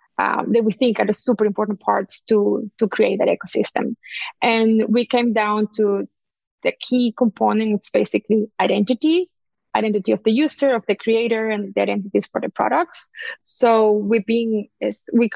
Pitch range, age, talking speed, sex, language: 210-240 Hz, 20-39, 160 wpm, female, English